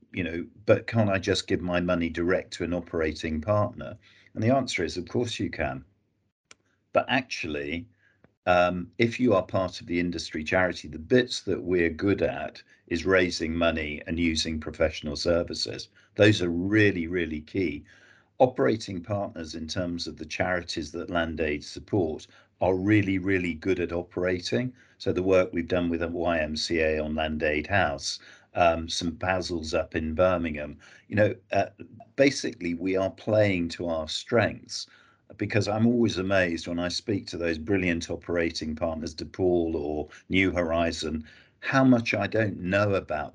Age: 50-69